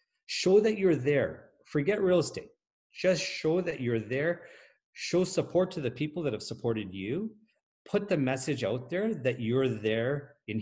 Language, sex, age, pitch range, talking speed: English, male, 40-59, 110-180 Hz, 170 wpm